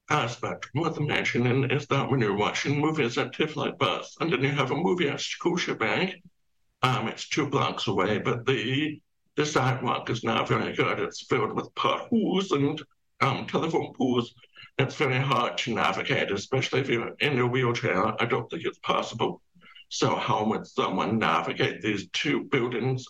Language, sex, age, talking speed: English, male, 60-79, 175 wpm